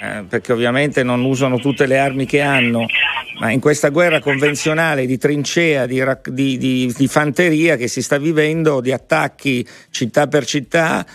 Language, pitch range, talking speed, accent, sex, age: Italian, 125-160 Hz, 155 wpm, native, male, 50-69